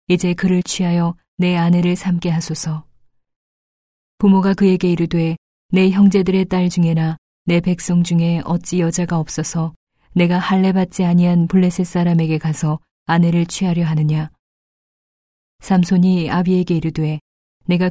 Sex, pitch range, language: female, 165-185 Hz, Korean